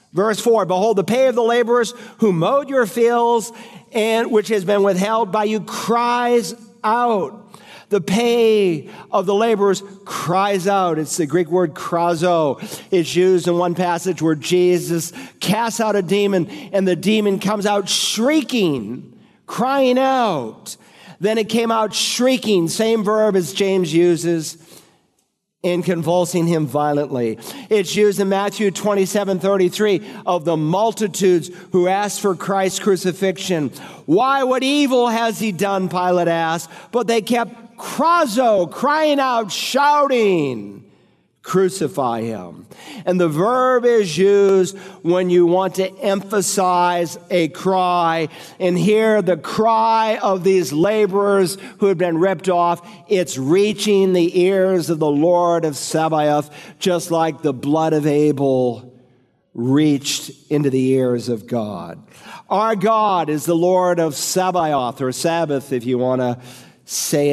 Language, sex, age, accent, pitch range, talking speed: English, male, 50-69, American, 170-220 Hz, 140 wpm